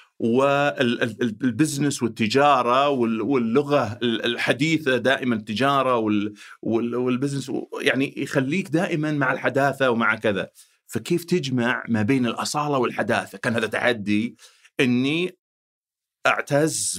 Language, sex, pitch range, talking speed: Arabic, male, 115-150 Hz, 90 wpm